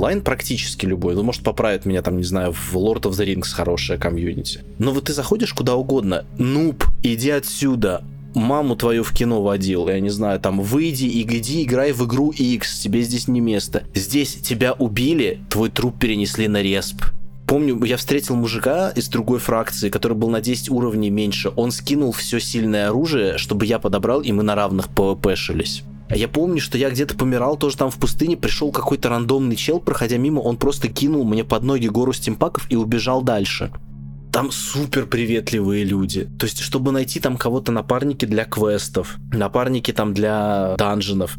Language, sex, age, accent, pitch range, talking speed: Russian, male, 20-39, native, 100-130 Hz, 180 wpm